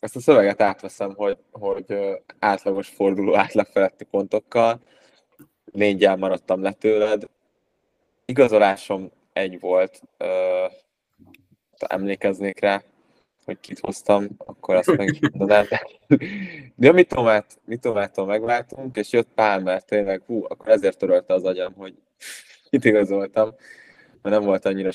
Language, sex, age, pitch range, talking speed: Hungarian, male, 20-39, 95-115 Hz, 125 wpm